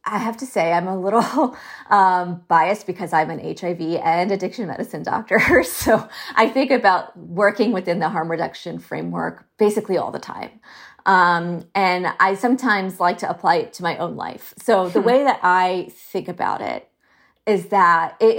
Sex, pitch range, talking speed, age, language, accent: female, 175-210 Hz, 175 wpm, 30-49, English, American